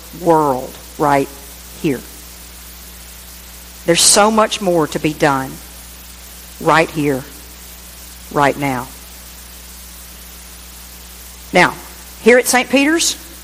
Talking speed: 85 wpm